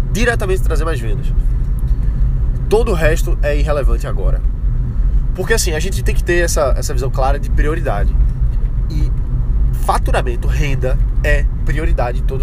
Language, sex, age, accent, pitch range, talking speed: Portuguese, male, 20-39, Brazilian, 115-150 Hz, 145 wpm